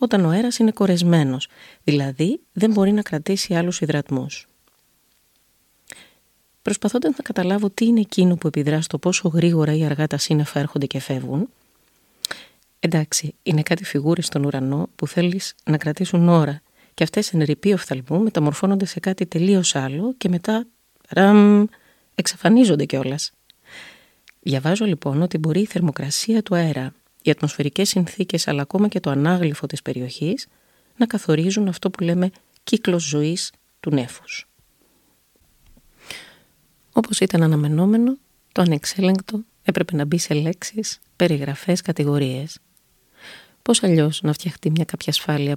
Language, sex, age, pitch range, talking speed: Greek, female, 30-49, 150-195 Hz, 180 wpm